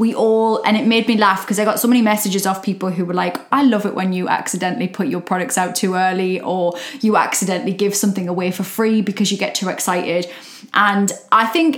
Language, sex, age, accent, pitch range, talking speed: English, female, 20-39, British, 200-255 Hz, 235 wpm